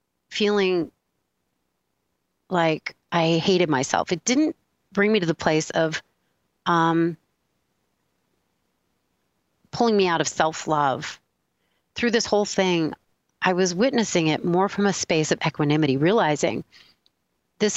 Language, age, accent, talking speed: English, 30-49, American, 120 wpm